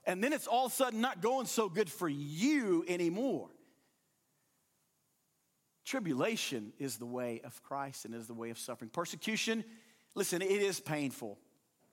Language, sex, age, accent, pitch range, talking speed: English, male, 40-59, American, 145-220 Hz, 155 wpm